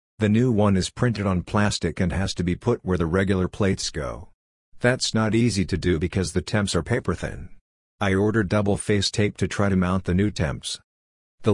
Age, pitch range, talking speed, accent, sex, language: 50-69, 90-105 Hz, 215 wpm, American, male, English